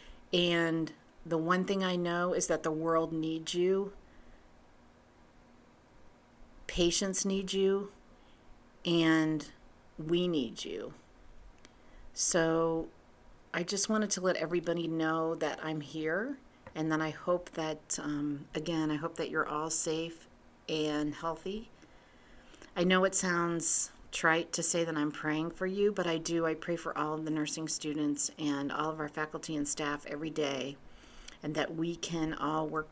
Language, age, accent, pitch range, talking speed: English, 40-59, American, 155-180 Hz, 150 wpm